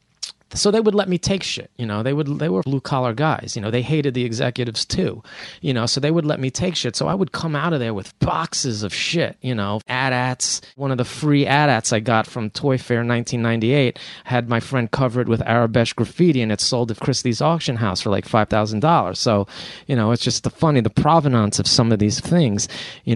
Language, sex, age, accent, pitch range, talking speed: English, male, 30-49, American, 110-140 Hz, 235 wpm